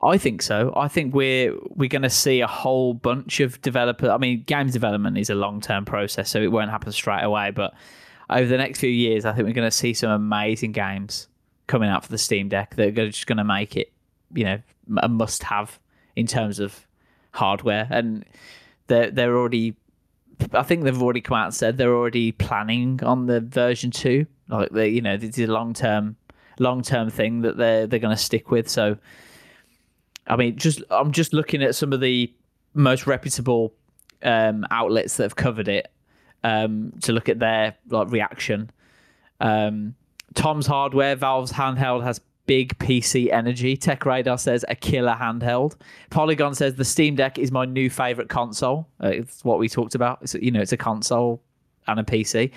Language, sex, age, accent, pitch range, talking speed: English, male, 20-39, British, 110-135 Hz, 190 wpm